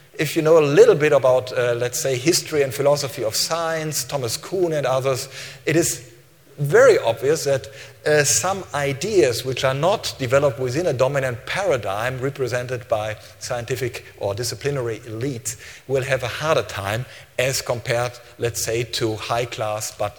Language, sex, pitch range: English, male, 120-160 Hz